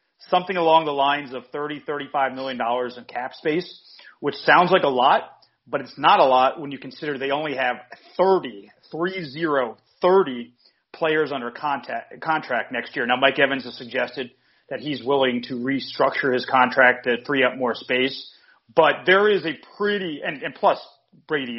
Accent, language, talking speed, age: American, English, 180 wpm, 30-49